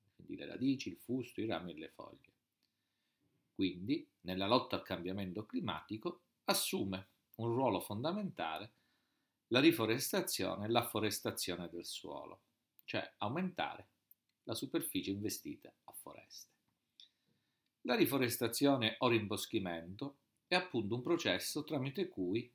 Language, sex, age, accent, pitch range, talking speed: Italian, male, 50-69, native, 95-135 Hz, 115 wpm